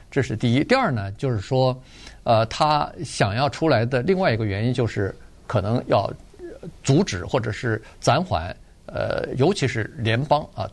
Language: Chinese